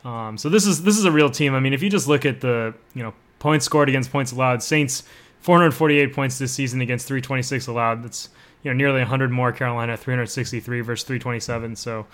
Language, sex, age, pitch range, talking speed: English, male, 20-39, 120-150 Hz, 210 wpm